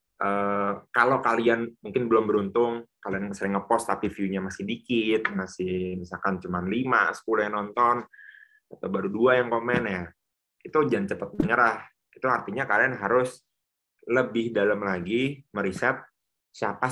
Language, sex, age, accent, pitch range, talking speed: Indonesian, male, 20-39, native, 95-120 Hz, 140 wpm